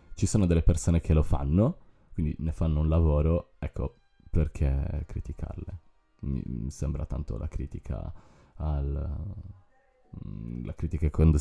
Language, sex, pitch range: Italian, male, 75-85 Hz